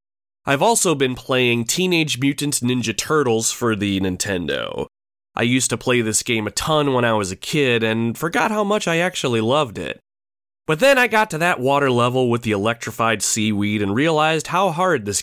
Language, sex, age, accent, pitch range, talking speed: English, male, 30-49, American, 100-145 Hz, 195 wpm